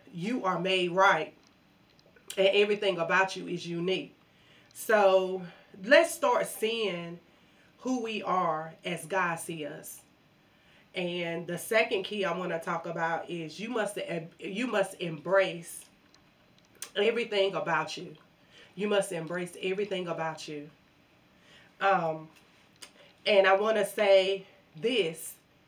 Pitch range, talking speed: 170-200 Hz, 120 wpm